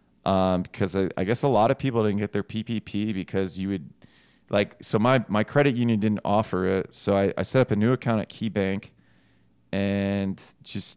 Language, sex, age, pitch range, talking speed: English, male, 30-49, 100-130 Hz, 210 wpm